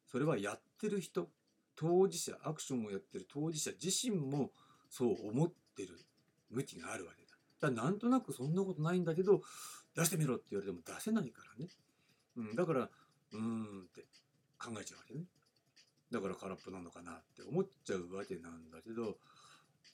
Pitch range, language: 115-190 Hz, Japanese